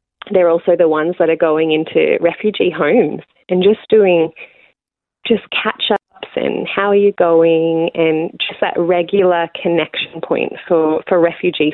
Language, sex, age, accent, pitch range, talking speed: English, female, 20-39, Australian, 155-190 Hz, 150 wpm